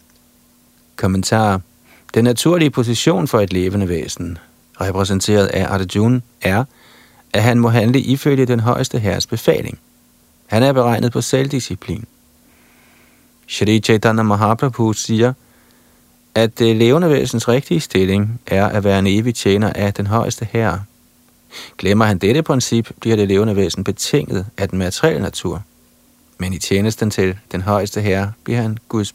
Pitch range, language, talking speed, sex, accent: 95-120 Hz, Danish, 140 wpm, male, native